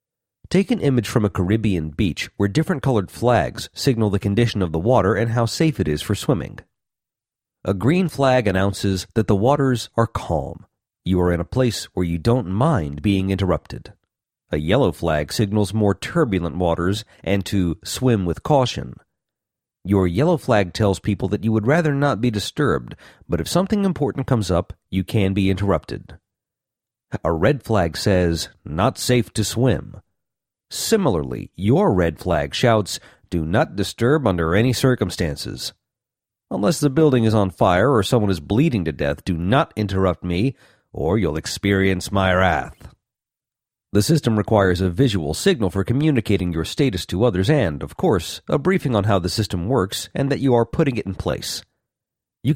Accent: American